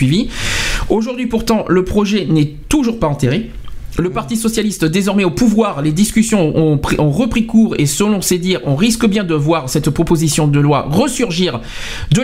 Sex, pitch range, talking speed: male, 155-215 Hz, 170 wpm